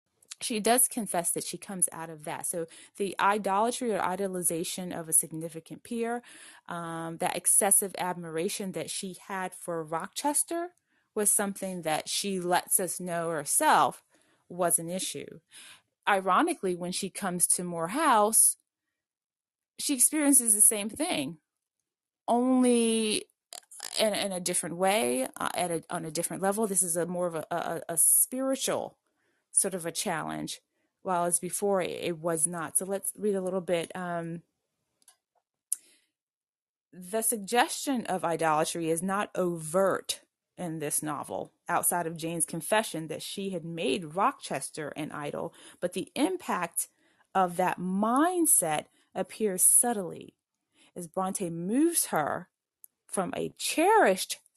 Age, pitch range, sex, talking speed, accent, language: 20-39, 170-215 Hz, female, 135 wpm, American, English